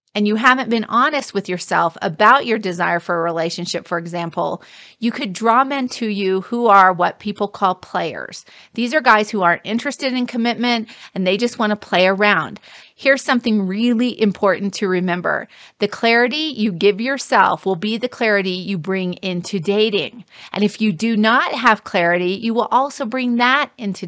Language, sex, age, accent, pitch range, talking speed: English, female, 40-59, American, 185-235 Hz, 185 wpm